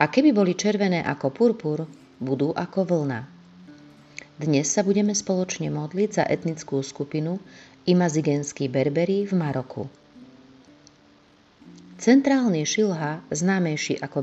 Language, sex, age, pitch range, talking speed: Slovak, female, 30-49, 145-190 Hz, 105 wpm